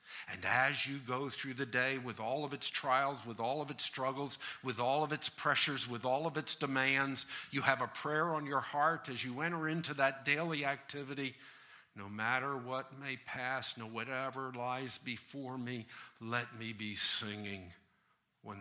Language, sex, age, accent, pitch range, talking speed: English, male, 50-69, American, 110-140 Hz, 180 wpm